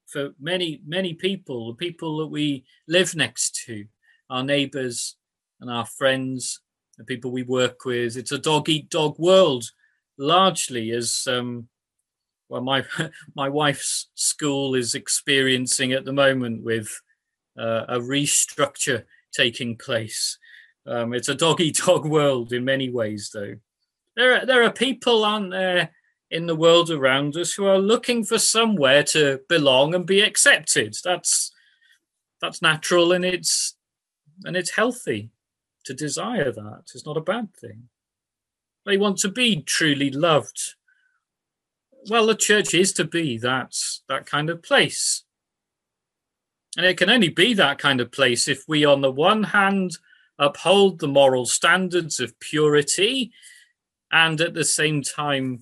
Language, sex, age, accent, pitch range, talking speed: English, male, 40-59, British, 130-185 Hz, 150 wpm